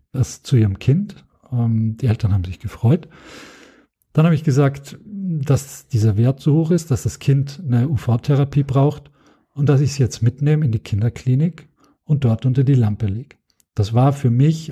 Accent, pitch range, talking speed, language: German, 115-150 Hz, 180 wpm, German